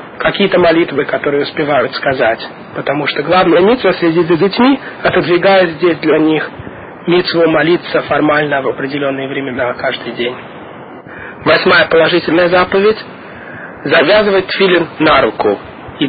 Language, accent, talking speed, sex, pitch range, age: Russian, native, 120 wpm, male, 155-195 Hz, 40-59